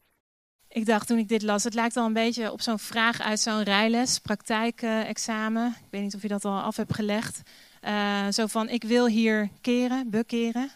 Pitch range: 200-225 Hz